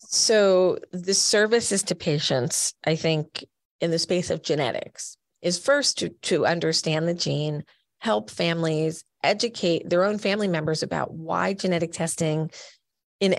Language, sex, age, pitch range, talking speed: English, female, 30-49, 155-185 Hz, 140 wpm